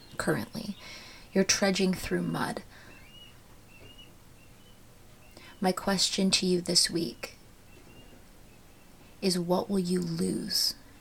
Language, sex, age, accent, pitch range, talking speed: English, female, 30-49, American, 175-200 Hz, 85 wpm